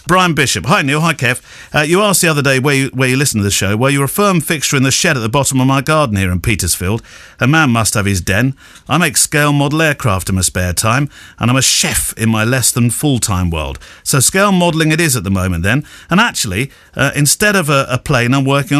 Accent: British